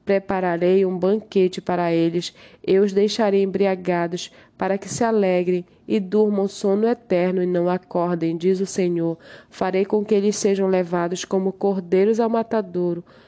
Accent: Brazilian